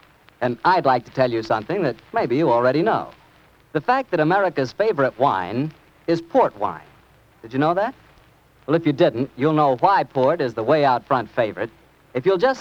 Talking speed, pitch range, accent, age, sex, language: 200 wpm, 125-180 Hz, American, 60-79, male, English